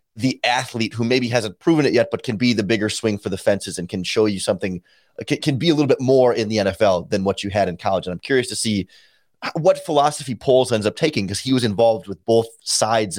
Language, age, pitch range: English, 30-49, 105-130 Hz